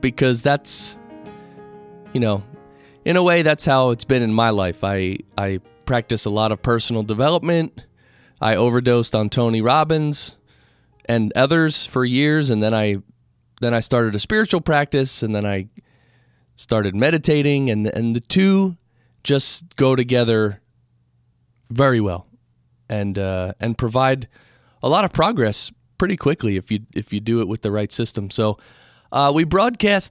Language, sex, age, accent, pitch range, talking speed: English, male, 30-49, American, 110-145 Hz, 155 wpm